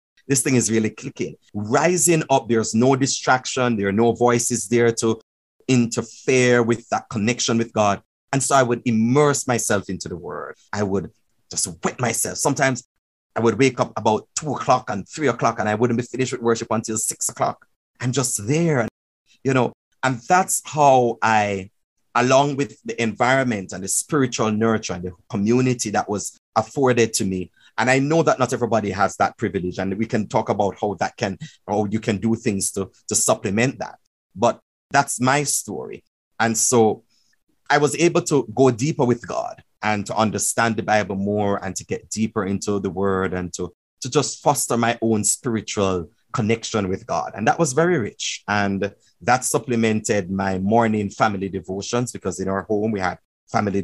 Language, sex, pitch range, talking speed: English, male, 100-125 Hz, 185 wpm